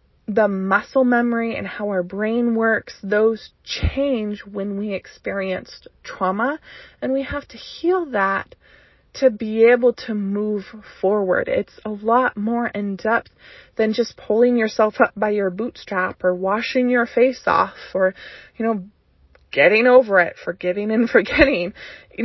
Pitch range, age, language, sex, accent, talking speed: 190-245 Hz, 20-39, English, female, American, 150 wpm